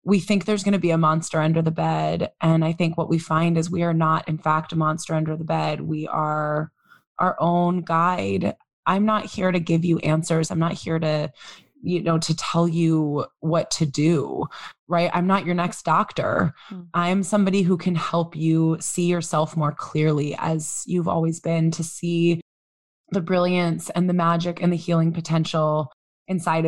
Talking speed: 190 wpm